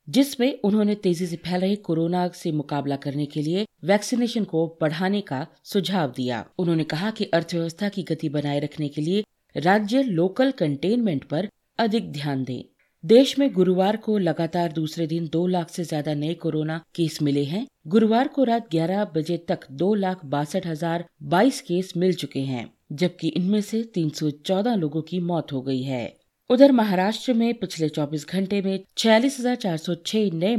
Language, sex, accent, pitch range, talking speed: Hindi, female, native, 155-210 Hz, 160 wpm